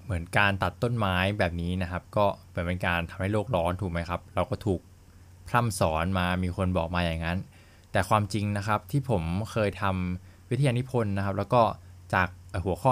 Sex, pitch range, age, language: male, 90-110 Hz, 20-39, Thai